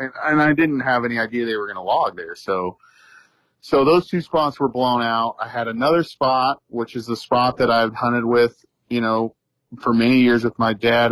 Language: English